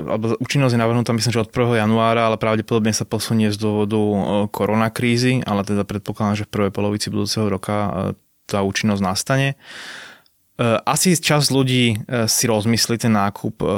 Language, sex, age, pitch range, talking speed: Slovak, male, 20-39, 100-115 Hz, 150 wpm